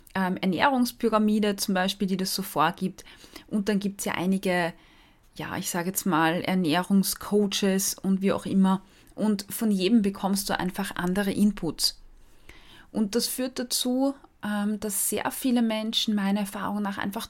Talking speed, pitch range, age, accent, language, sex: 155 wpm, 200-245 Hz, 20-39, German, German, female